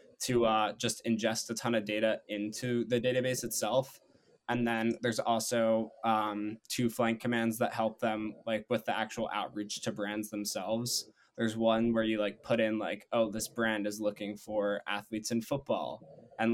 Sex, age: male, 10-29